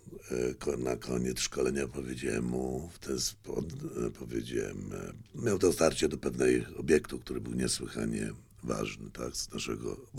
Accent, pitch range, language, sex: native, 70-110 Hz, Polish, male